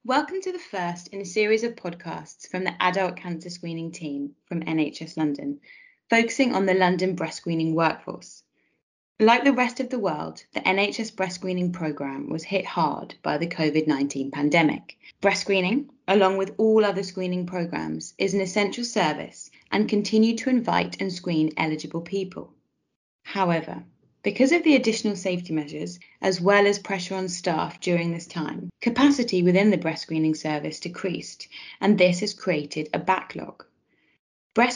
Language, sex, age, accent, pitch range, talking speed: English, female, 20-39, British, 165-205 Hz, 160 wpm